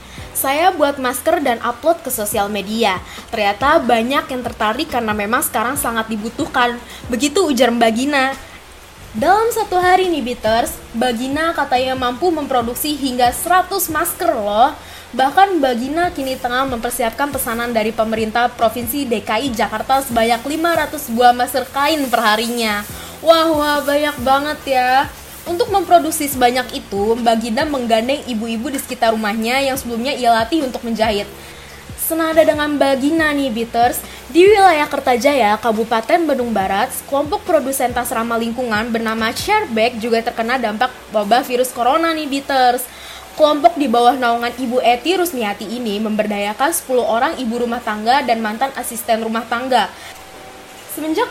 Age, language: 20-39, Indonesian